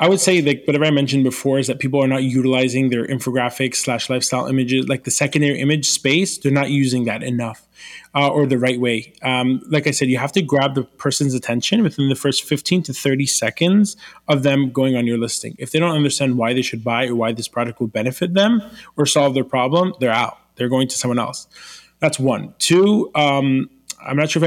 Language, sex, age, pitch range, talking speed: English, male, 20-39, 130-155 Hz, 225 wpm